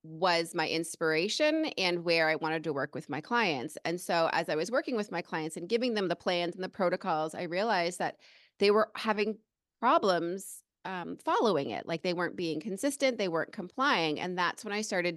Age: 30-49